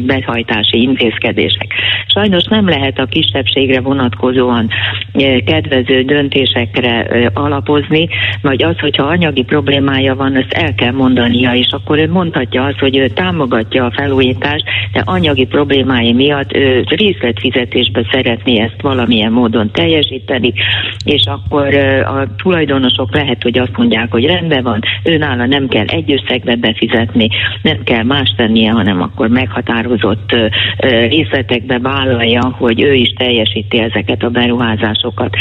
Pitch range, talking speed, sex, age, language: 110-135 Hz, 125 wpm, female, 40-59, Hungarian